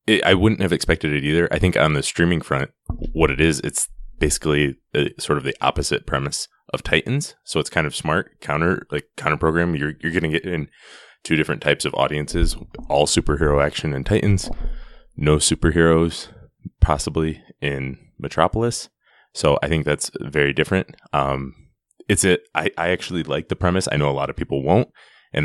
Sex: male